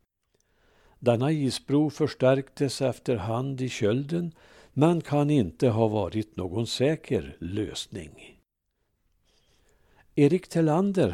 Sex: male